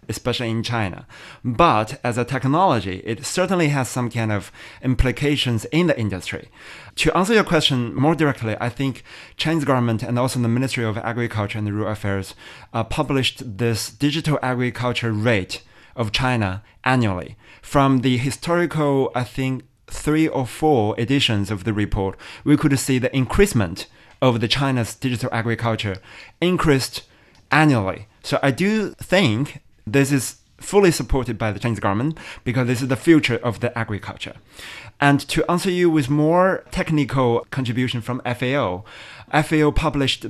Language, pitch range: English, 115-145 Hz